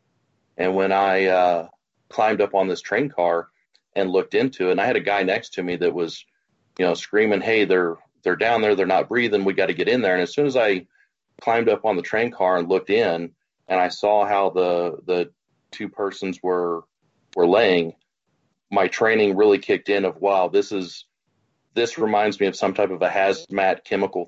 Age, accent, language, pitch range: 30-49, American, English, 90-105 Hz